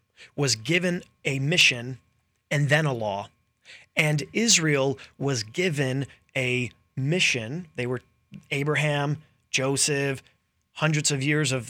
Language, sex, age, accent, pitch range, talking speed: English, male, 30-49, American, 125-155 Hz, 115 wpm